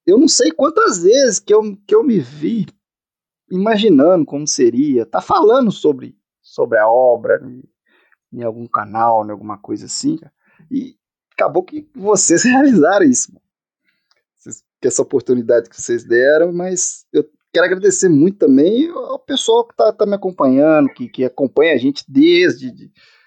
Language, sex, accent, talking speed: Portuguese, male, Brazilian, 145 wpm